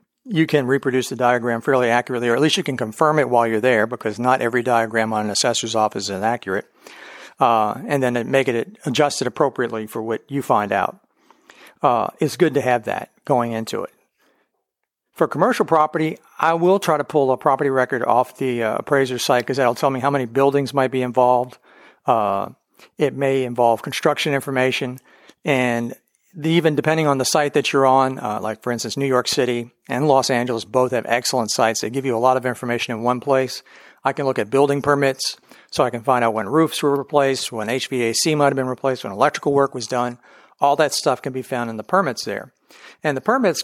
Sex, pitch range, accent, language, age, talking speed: male, 120-145 Hz, American, English, 50-69, 210 wpm